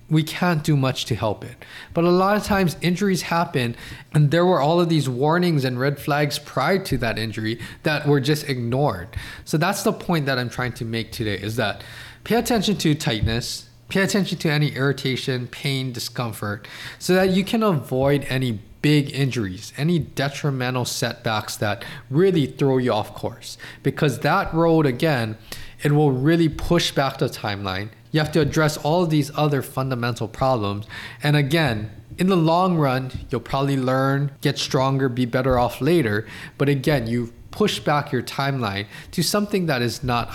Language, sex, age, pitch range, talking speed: English, male, 20-39, 120-155 Hz, 180 wpm